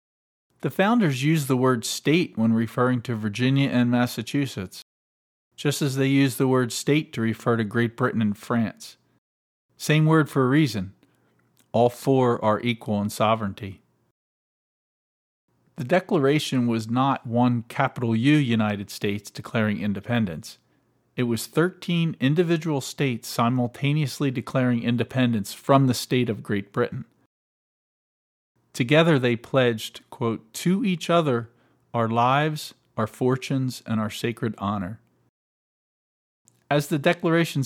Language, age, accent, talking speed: English, 40-59, American, 125 wpm